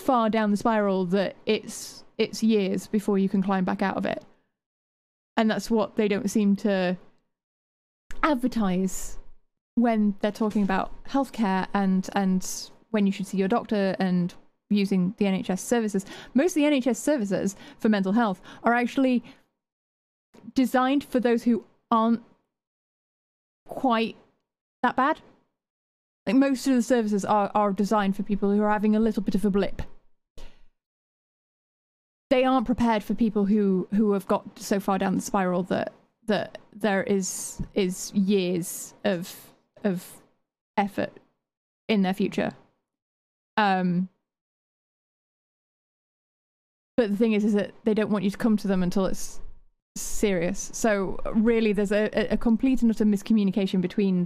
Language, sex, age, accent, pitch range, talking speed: English, female, 20-39, British, 195-230 Hz, 145 wpm